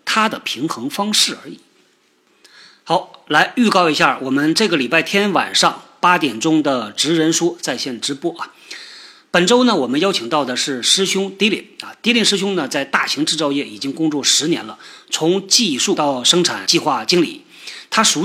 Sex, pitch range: male, 155-240 Hz